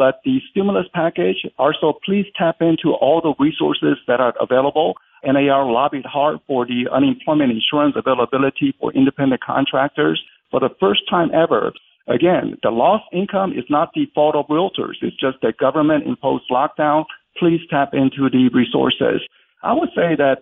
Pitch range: 135-185 Hz